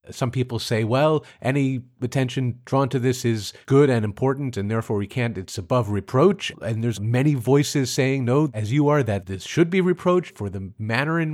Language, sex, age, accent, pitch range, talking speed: English, male, 40-59, American, 115-170 Hz, 200 wpm